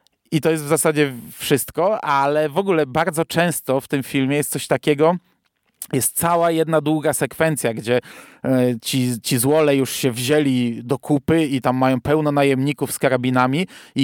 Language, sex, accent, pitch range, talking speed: Polish, male, native, 140-180 Hz, 165 wpm